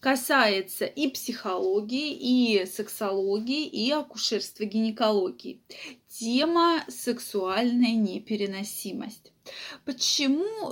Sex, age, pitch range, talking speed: female, 20-39, 220-295 Hz, 65 wpm